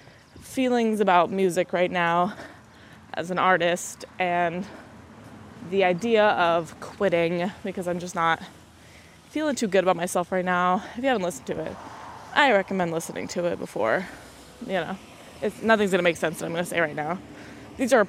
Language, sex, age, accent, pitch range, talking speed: English, female, 20-39, American, 175-220 Hz, 175 wpm